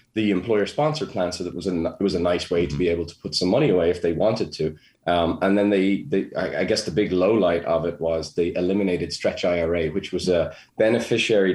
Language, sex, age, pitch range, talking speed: English, male, 20-39, 90-105 Hz, 250 wpm